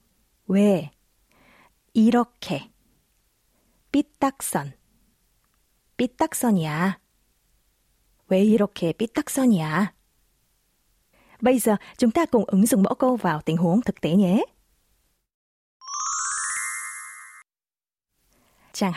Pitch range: 180-240 Hz